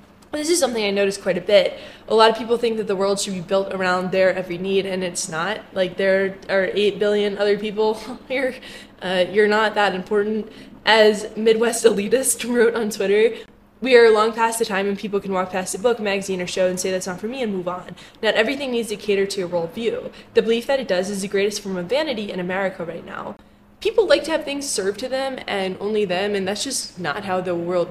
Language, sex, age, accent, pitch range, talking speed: English, female, 10-29, American, 195-230 Hz, 240 wpm